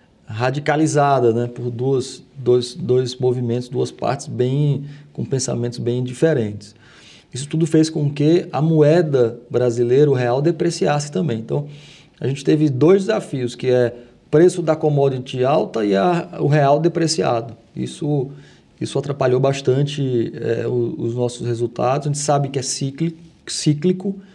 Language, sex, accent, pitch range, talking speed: Portuguese, male, Brazilian, 125-155 Hz, 145 wpm